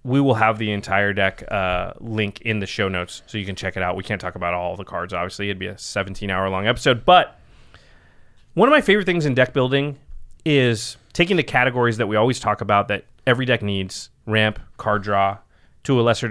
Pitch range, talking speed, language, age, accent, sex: 105-150 Hz, 220 wpm, English, 30-49, American, male